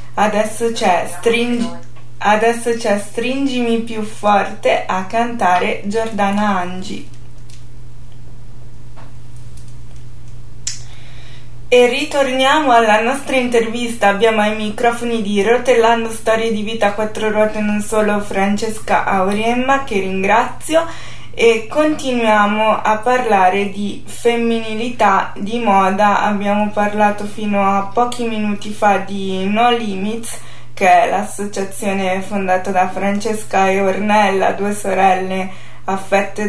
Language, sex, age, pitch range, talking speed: Italian, female, 20-39, 190-230 Hz, 100 wpm